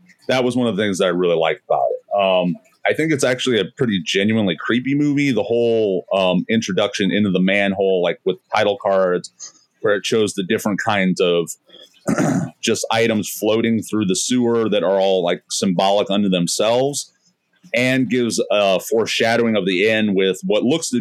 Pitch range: 95-130 Hz